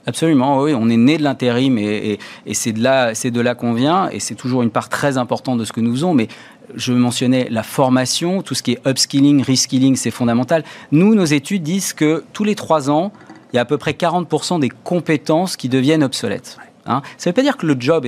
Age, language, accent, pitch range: 40-59, French, French, 125-160 Hz